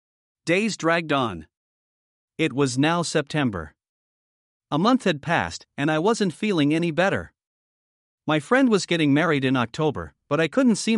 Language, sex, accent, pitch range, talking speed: English, male, American, 125-170 Hz, 155 wpm